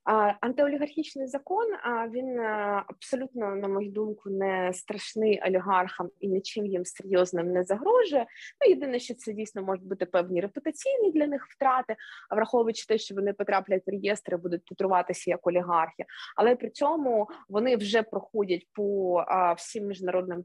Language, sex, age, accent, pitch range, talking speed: Ukrainian, female, 20-39, native, 175-230 Hz, 140 wpm